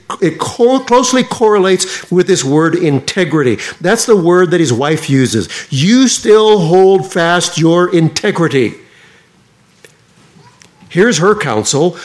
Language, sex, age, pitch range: English, male, 50-69, 130-175 Hz